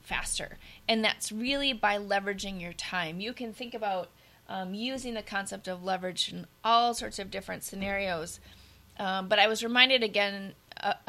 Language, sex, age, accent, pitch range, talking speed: English, female, 20-39, American, 185-225 Hz, 170 wpm